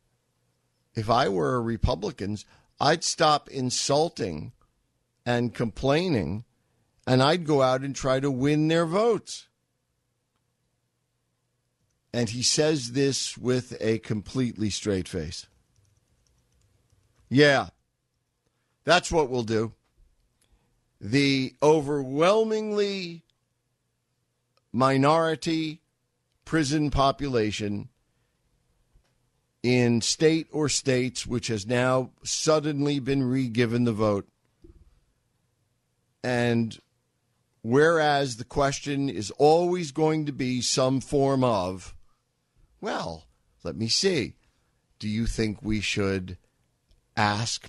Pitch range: 105-140 Hz